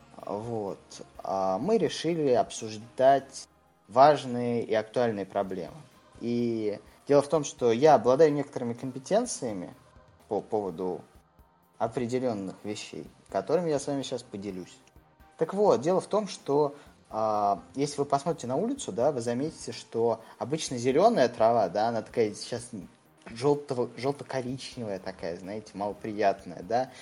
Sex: male